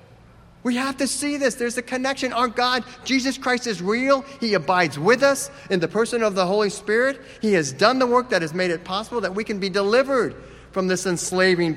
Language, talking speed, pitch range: English, 220 wpm, 125-185 Hz